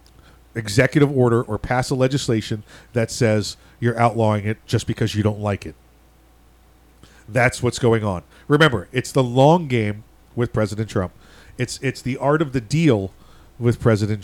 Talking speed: 160 wpm